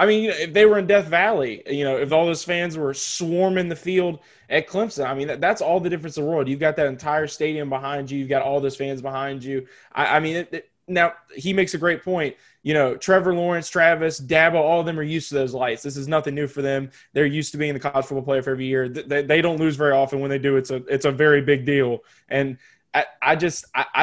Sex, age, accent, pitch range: male, 20-39, American, 140-165 Hz